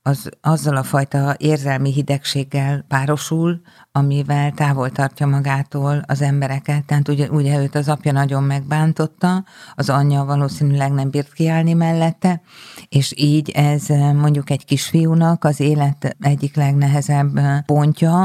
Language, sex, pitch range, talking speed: Hungarian, female, 140-150 Hz, 125 wpm